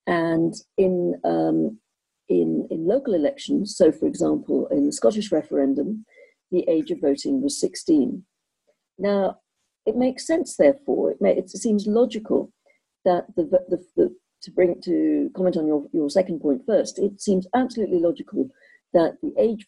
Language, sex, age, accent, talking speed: English, female, 50-69, British, 155 wpm